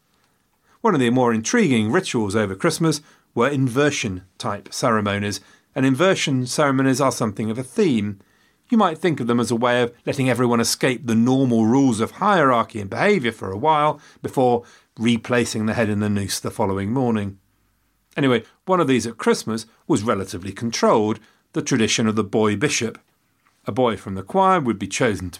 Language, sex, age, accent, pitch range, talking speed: English, male, 40-59, British, 105-135 Hz, 175 wpm